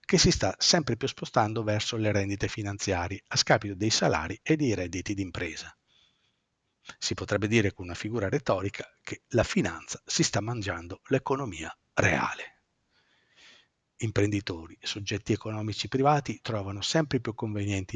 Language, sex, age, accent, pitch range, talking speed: Italian, male, 50-69, native, 100-120 Hz, 135 wpm